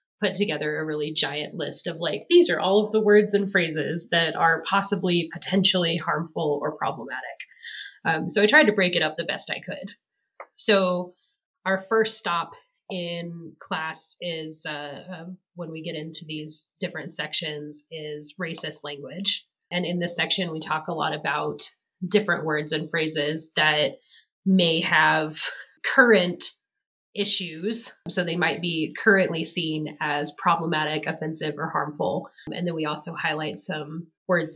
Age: 30-49